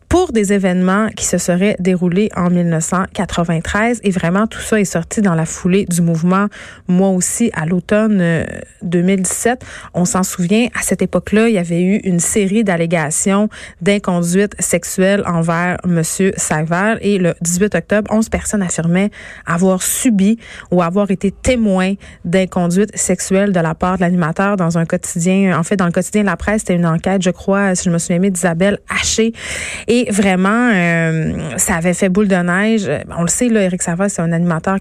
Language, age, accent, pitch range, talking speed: French, 30-49, Canadian, 170-200 Hz, 185 wpm